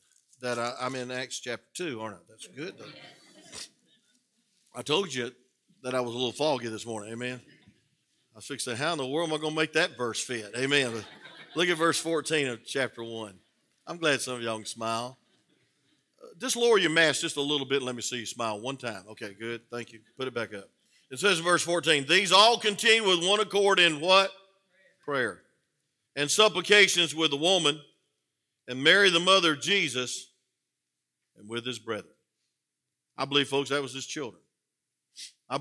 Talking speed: 195 wpm